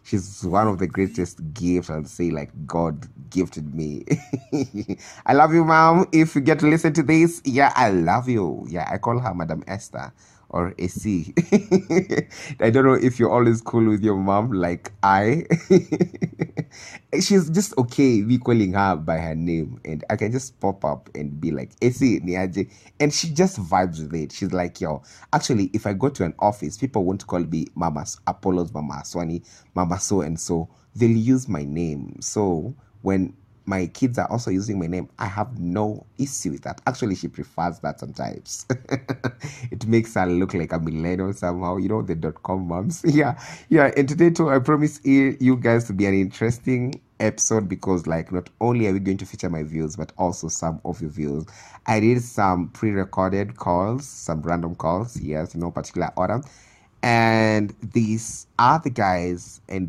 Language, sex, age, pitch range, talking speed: English, male, 30-49, 90-125 Hz, 180 wpm